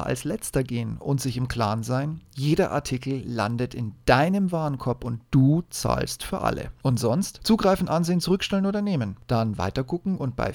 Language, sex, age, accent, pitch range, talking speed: German, male, 40-59, German, 115-170 Hz, 170 wpm